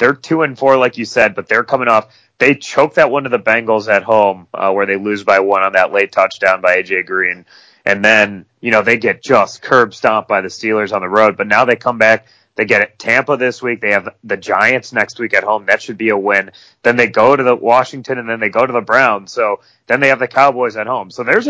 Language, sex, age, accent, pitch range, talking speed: English, male, 30-49, American, 95-125 Hz, 265 wpm